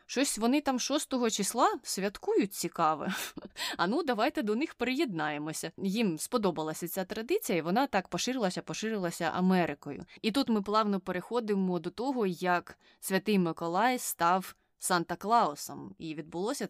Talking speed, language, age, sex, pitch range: 135 wpm, Ukrainian, 20-39, female, 175-215 Hz